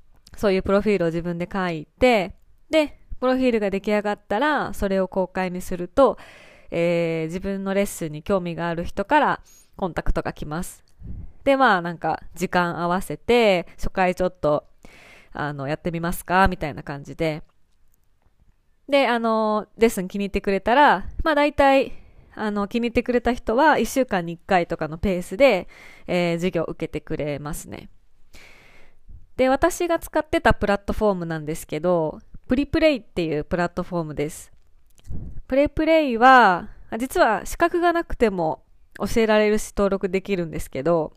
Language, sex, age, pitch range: Japanese, female, 20-39, 170-235 Hz